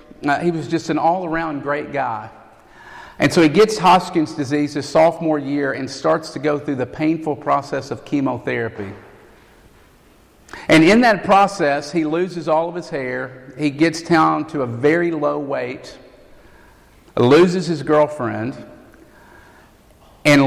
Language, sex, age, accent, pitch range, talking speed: English, male, 50-69, American, 135-165 Hz, 145 wpm